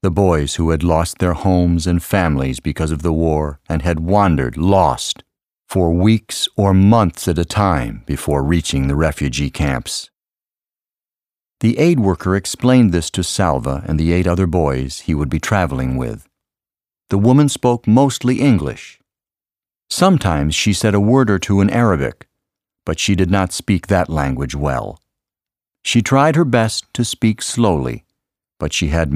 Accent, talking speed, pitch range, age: American, 160 wpm, 75-110 Hz, 50-69